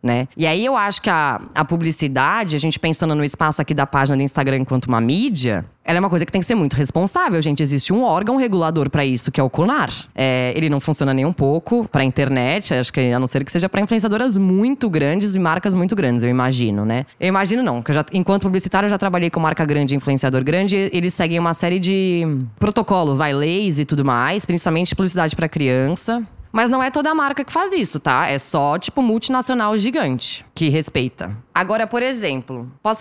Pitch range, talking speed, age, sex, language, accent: 145-240 Hz, 215 wpm, 20-39, female, Portuguese, Brazilian